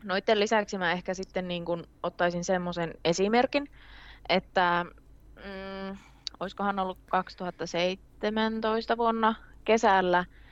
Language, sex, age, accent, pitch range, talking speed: Finnish, female, 20-39, native, 170-195 Hz, 95 wpm